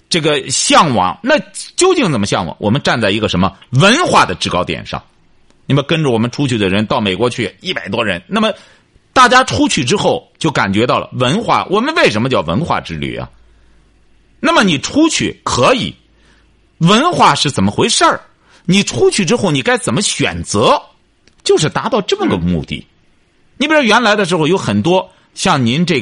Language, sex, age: Chinese, male, 50-69